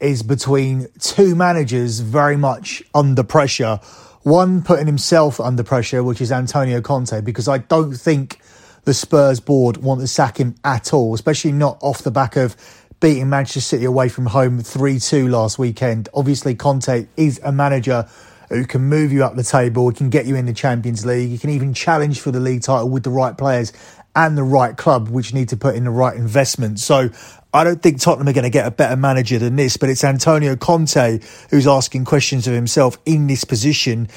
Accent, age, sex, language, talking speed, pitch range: British, 30-49, male, English, 200 wpm, 125-150 Hz